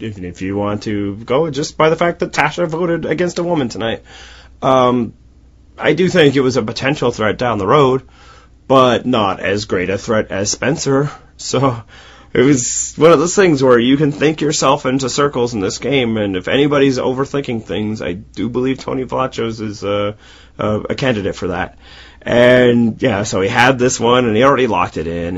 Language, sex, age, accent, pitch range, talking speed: English, male, 30-49, American, 105-140 Hz, 195 wpm